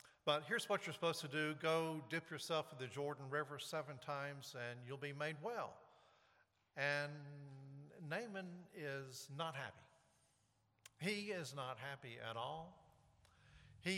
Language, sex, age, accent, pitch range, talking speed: English, male, 50-69, American, 140-185 Hz, 140 wpm